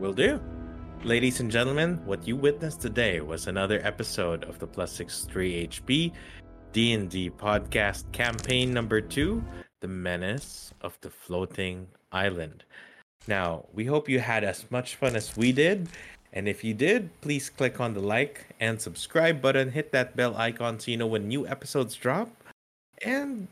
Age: 20-39